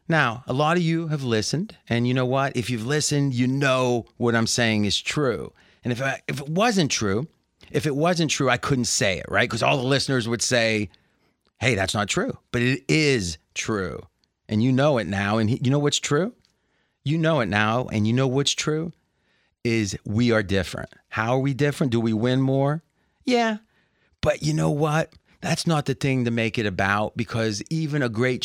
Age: 30-49